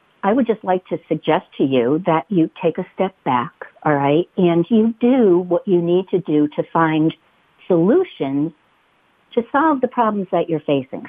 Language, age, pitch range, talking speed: English, 60-79, 155-220 Hz, 185 wpm